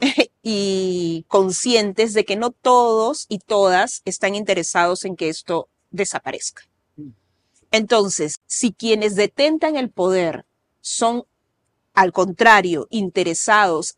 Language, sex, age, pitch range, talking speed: Spanish, female, 40-59, 185-245 Hz, 105 wpm